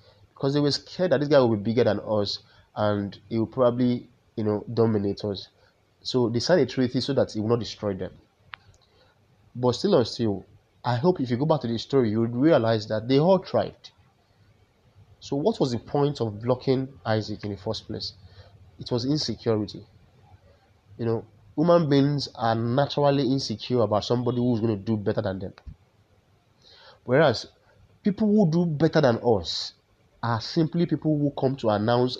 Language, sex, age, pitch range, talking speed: English, male, 30-49, 105-130 Hz, 180 wpm